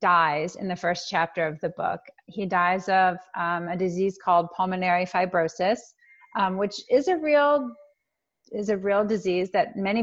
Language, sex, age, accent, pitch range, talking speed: English, female, 30-49, American, 175-210 Hz, 170 wpm